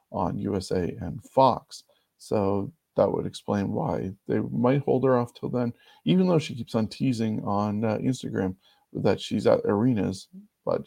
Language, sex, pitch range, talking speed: English, male, 100-135 Hz, 165 wpm